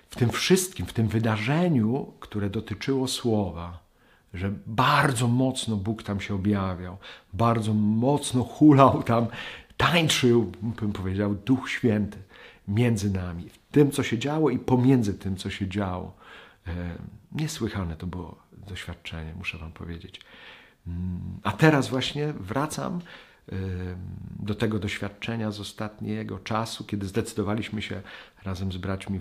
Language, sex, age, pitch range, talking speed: Polish, male, 40-59, 90-115 Hz, 125 wpm